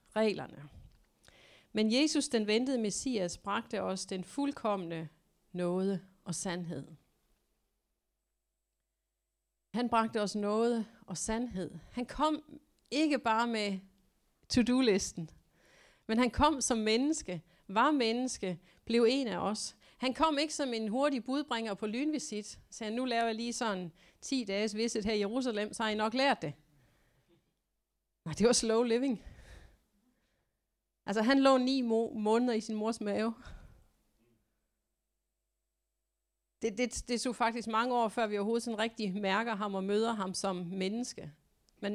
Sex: female